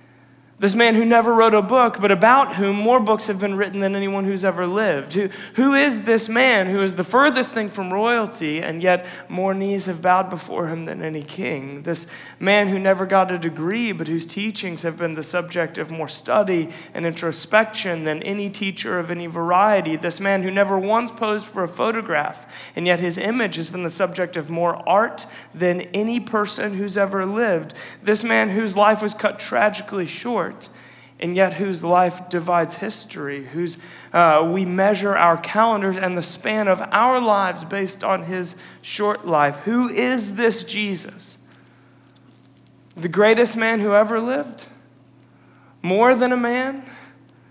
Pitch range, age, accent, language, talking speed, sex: 170-215 Hz, 30-49, American, English, 175 wpm, male